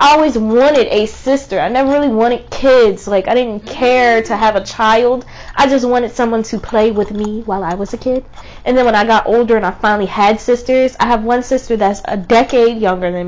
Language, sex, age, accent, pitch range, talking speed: English, female, 10-29, American, 205-250 Hz, 230 wpm